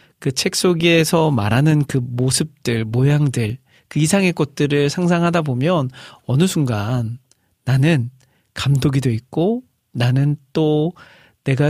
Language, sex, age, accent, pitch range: Korean, male, 40-59, native, 125-155 Hz